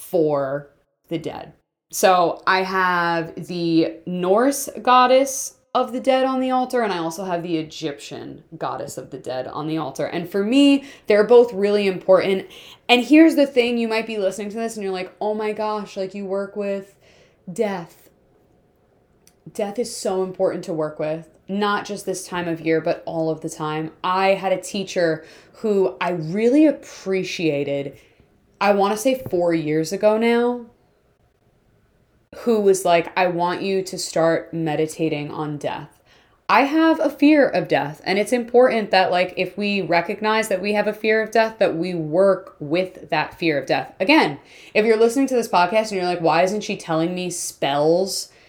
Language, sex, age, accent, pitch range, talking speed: English, female, 20-39, American, 165-215 Hz, 180 wpm